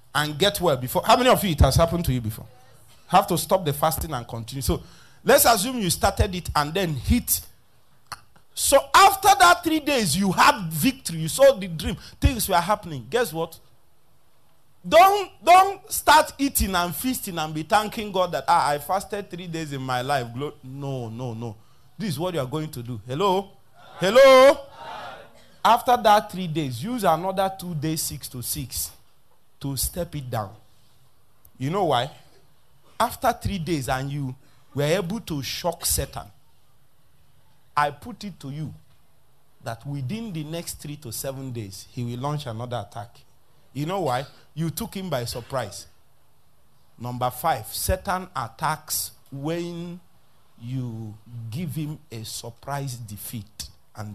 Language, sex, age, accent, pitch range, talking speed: English, male, 30-49, Nigerian, 125-185 Hz, 160 wpm